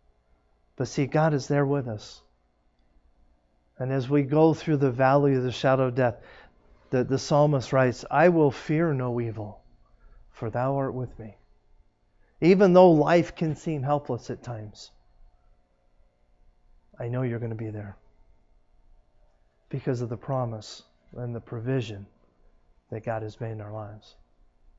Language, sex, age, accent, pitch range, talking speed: English, male, 40-59, American, 105-145 Hz, 150 wpm